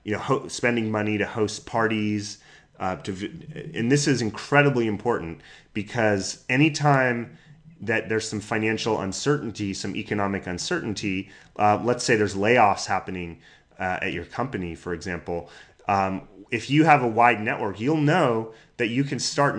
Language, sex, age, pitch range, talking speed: English, male, 30-49, 100-120 Hz, 155 wpm